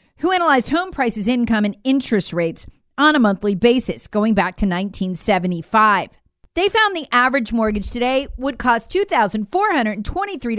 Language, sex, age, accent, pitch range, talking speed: English, female, 40-59, American, 210-300 Hz, 135 wpm